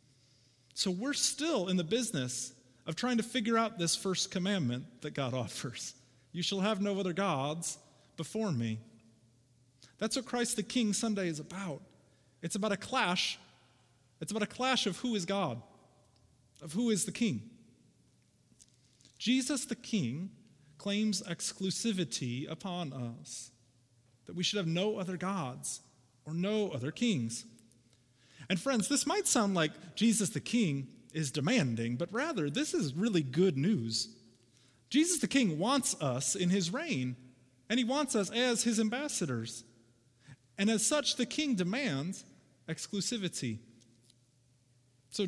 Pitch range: 125-205 Hz